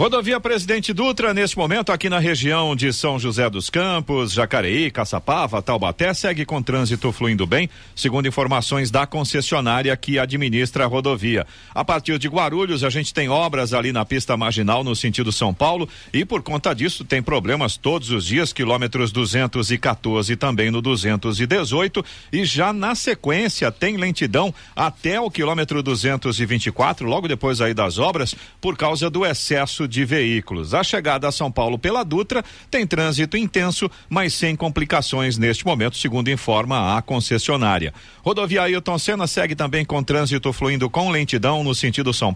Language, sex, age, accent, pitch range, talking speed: Portuguese, male, 50-69, Brazilian, 125-165 Hz, 160 wpm